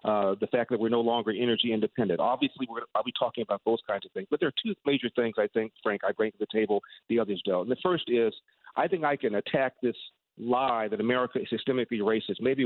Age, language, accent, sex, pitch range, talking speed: 40-59, English, American, male, 115-130 Hz, 245 wpm